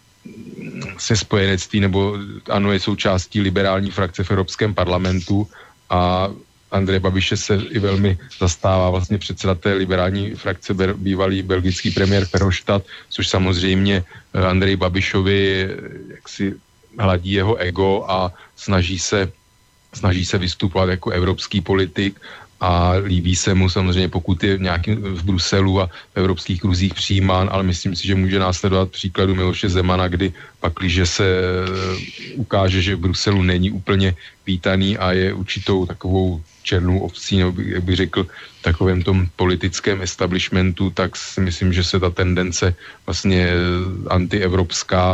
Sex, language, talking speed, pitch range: male, Slovak, 135 wpm, 90-100 Hz